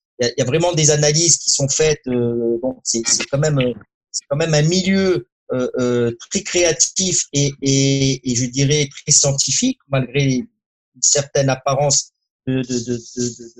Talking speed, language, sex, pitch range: 175 wpm, French, male, 125-165 Hz